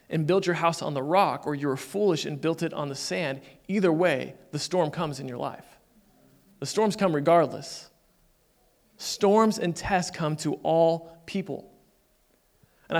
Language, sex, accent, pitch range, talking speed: English, male, American, 145-180 Hz, 170 wpm